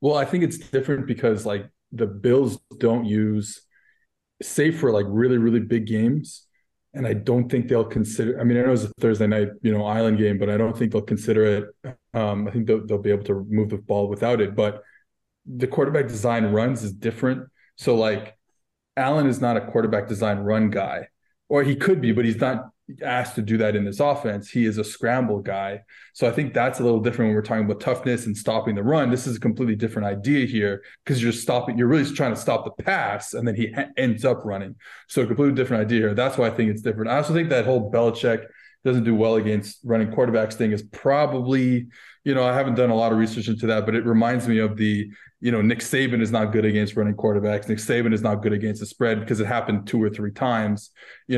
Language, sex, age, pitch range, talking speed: English, male, 20-39, 105-125 Hz, 240 wpm